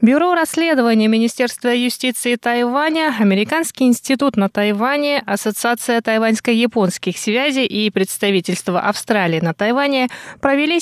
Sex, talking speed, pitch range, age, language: female, 100 wpm, 195-245 Hz, 20-39, Russian